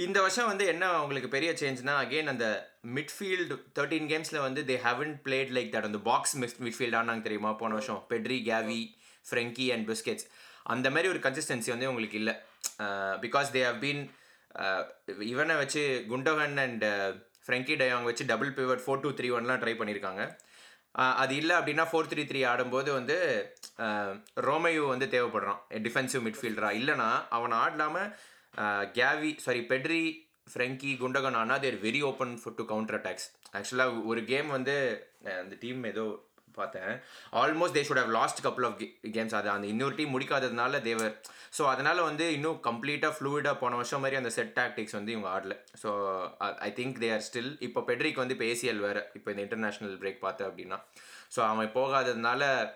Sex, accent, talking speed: male, native, 160 wpm